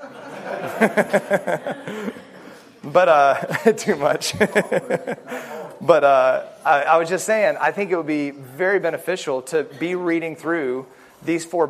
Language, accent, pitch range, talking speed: English, American, 120-155 Hz, 125 wpm